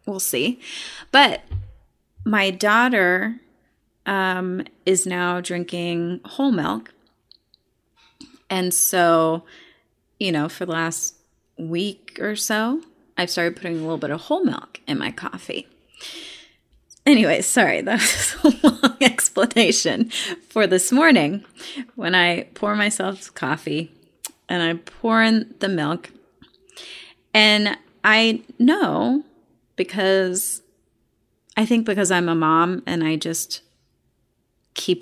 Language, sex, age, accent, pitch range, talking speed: English, female, 30-49, American, 175-240 Hz, 115 wpm